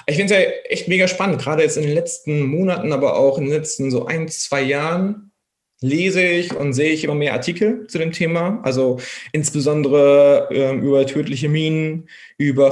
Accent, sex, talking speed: German, male, 190 wpm